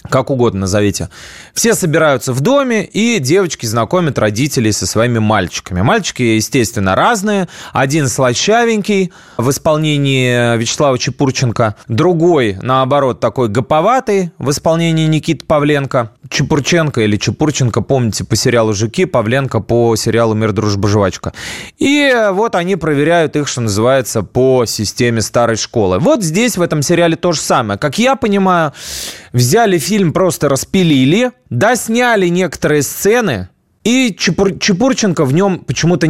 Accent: native